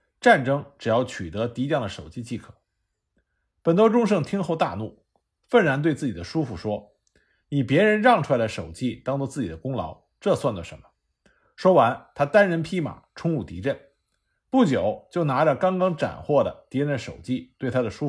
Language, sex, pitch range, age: Chinese, male, 115-190 Hz, 50-69